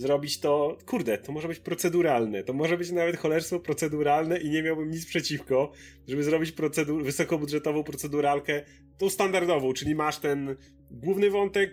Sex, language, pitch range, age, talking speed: male, Polish, 130-160 Hz, 30-49, 150 wpm